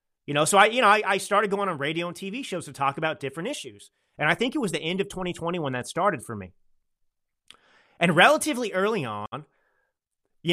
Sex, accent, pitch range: male, American, 135-180 Hz